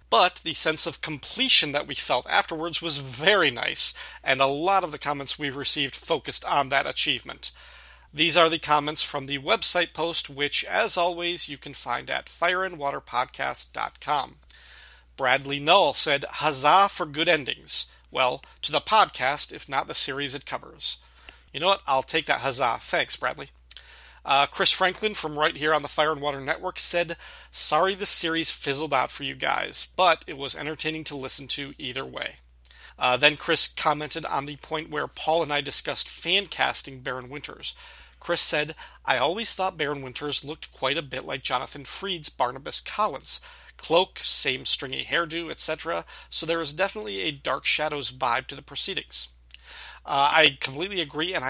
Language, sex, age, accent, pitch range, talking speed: English, male, 40-59, American, 140-170 Hz, 175 wpm